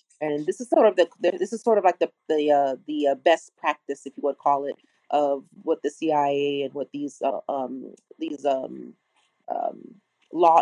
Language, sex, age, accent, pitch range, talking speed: English, female, 30-49, American, 145-175 Hz, 205 wpm